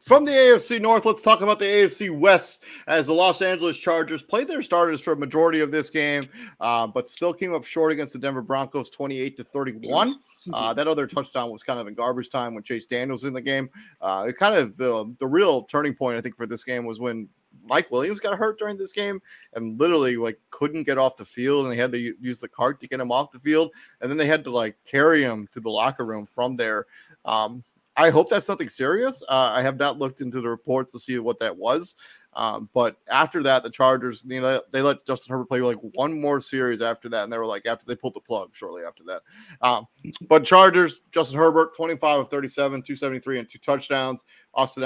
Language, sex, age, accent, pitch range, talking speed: English, male, 30-49, American, 120-155 Hz, 235 wpm